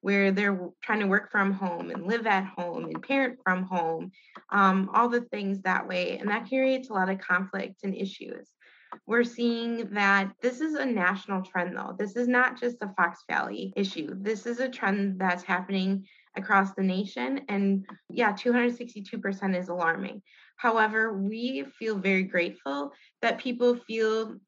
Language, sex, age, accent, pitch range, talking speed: English, female, 20-39, American, 195-240 Hz, 165 wpm